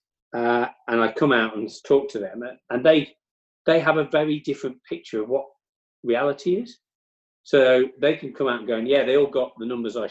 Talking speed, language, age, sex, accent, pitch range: 210 wpm, English, 40-59, male, British, 105-140 Hz